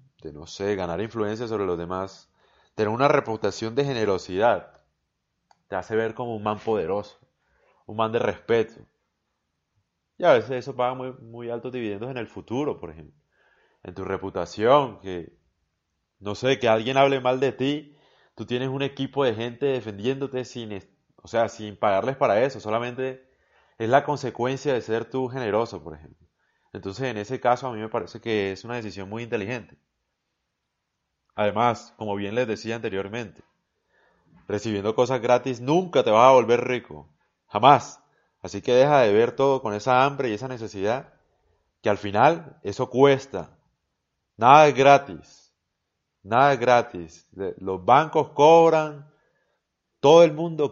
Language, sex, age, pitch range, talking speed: Spanish, male, 30-49, 100-135 Hz, 155 wpm